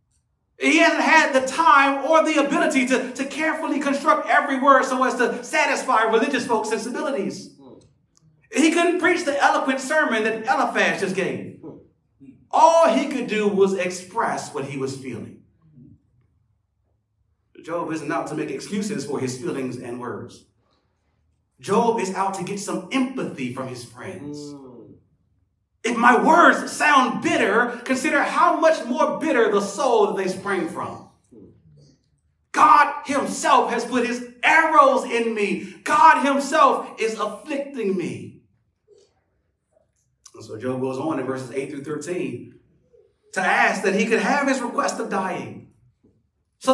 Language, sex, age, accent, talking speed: English, male, 40-59, American, 145 wpm